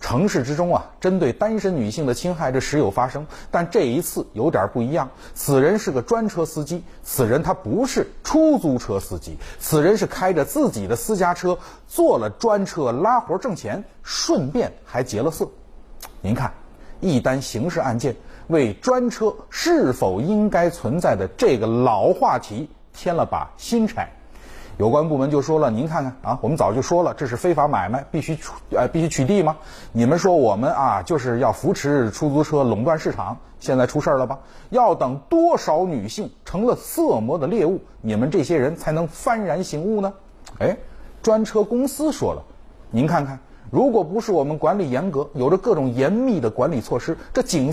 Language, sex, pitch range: Chinese, male, 135-205 Hz